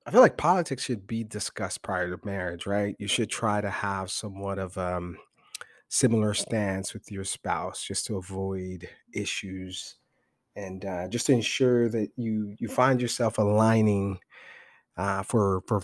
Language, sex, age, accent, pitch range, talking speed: English, male, 30-49, American, 100-120 Hz, 160 wpm